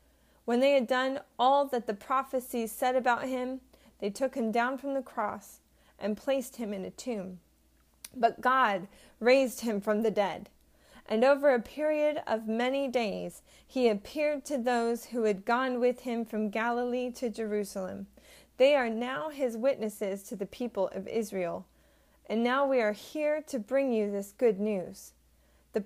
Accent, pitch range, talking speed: American, 205-260 Hz, 170 wpm